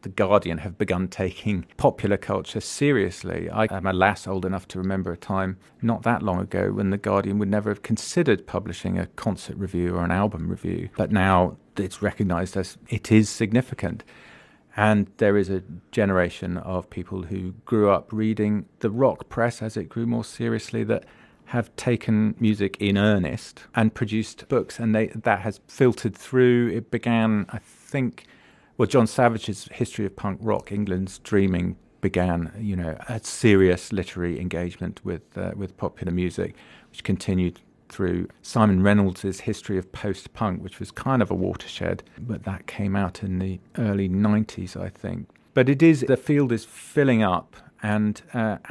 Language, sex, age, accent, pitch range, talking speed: English, male, 40-59, British, 95-115 Hz, 170 wpm